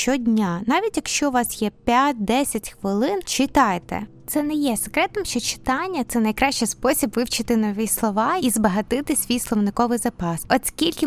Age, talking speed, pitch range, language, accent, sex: 20-39, 145 wpm, 220-275 Hz, Ukrainian, native, female